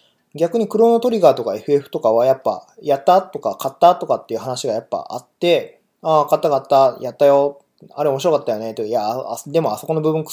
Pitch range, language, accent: 130-170 Hz, Japanese, native